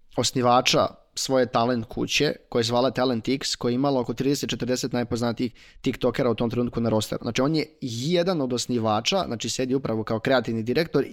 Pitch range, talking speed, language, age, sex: 120-140 Hz, 165 wpm, Croatian, 20-39, male